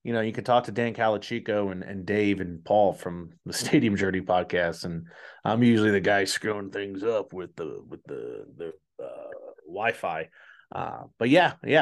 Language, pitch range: English, 100-130 Hz